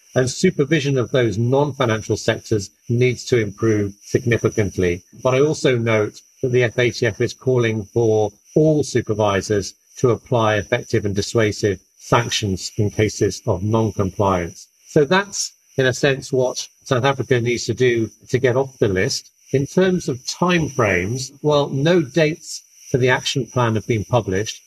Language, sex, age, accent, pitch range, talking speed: English, male, 50-69, British, 105-130 Hz, 150 wpm